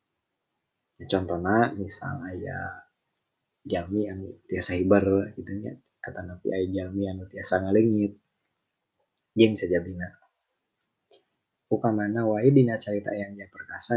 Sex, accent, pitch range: male, native, 100-125 Hz